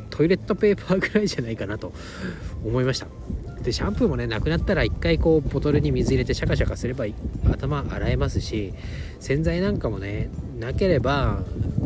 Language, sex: Japanese, male